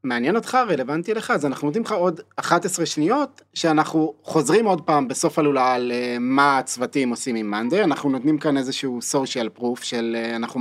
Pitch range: 120-150 Hz